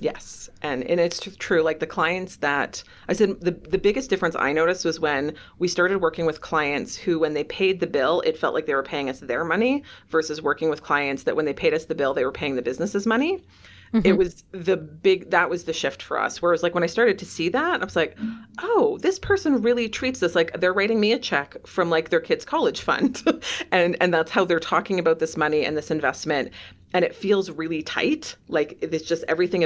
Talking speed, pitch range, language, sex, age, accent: 235 wpm, 155-195 Hz, English, female, 30-49, American